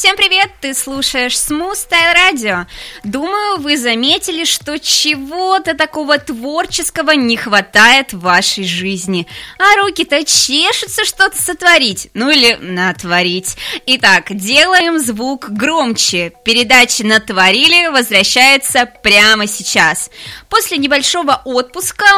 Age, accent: 20-39, native